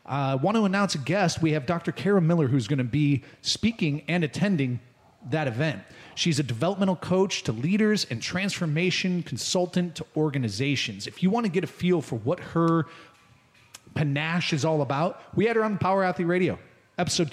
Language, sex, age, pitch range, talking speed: English, male, 30-49, 135-175 Hz, 190 wpm